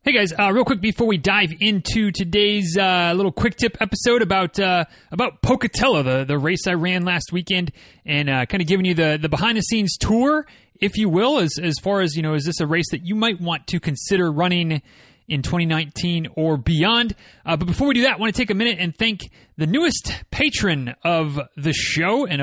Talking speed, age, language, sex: 220 wpm, 30-49, English, male